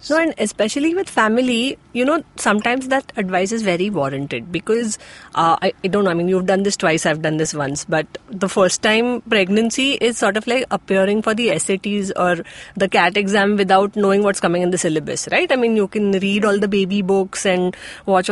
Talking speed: 215 wpm